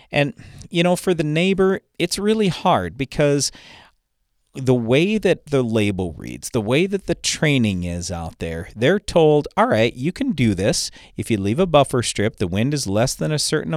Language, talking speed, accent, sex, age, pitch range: English, 195 wpm, American, male, 40-59, 100-150 Hz